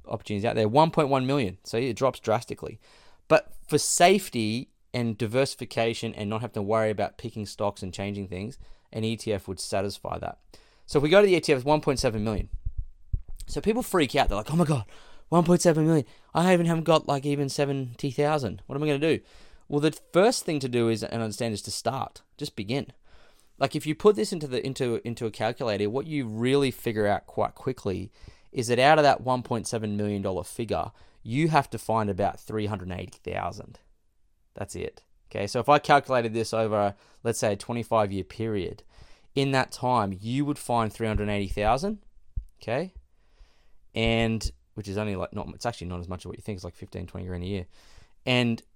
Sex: male